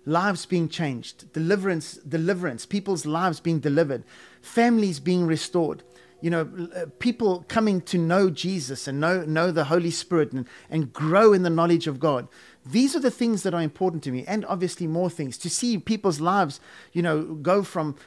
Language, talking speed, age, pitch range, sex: English, 185 wpm, 30-49, 155-190 Hz, male